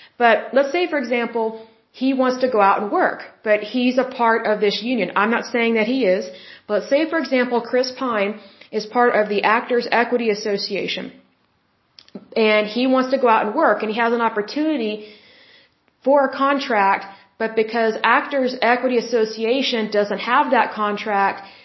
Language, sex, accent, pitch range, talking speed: Russian, female, American, 215-265 Hz, 175 wpm